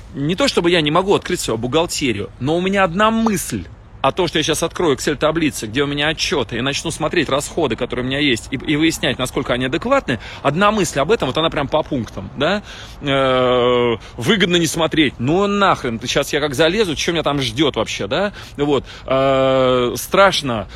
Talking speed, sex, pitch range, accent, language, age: 205 wpm, male, 120-165 Hz, native, Russian, 30-49